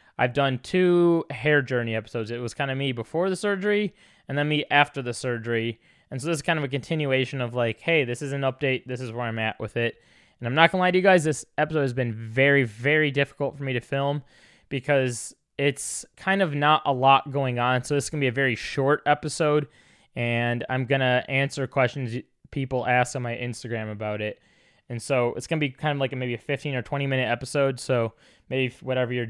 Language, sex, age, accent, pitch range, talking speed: English, male, 20-39, American, 120-145 Hz, 235 wpm